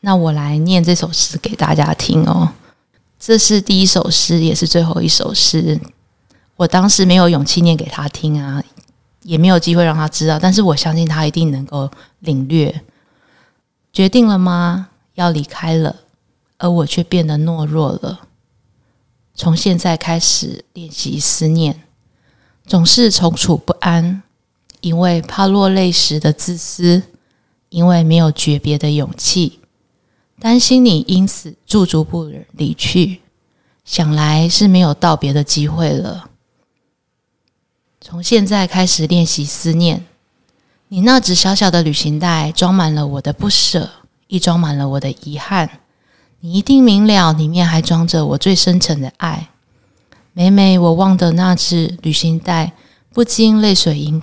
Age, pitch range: 20-39, 155-185 Hz